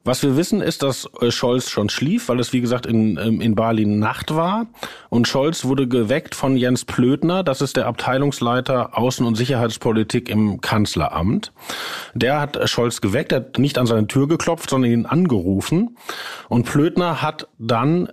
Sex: male